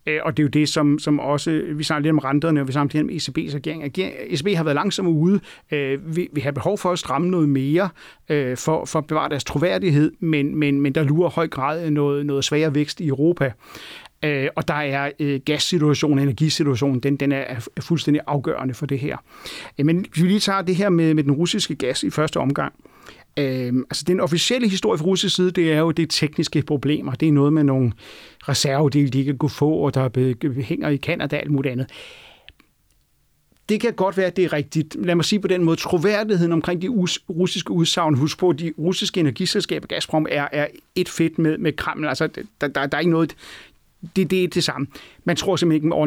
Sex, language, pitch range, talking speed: male, Danish, 145-180 Hz, 215 wpm